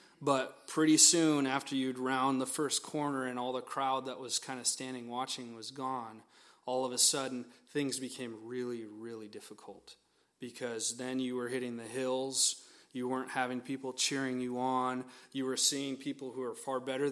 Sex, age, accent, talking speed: male, 30-49, American, 180 wpm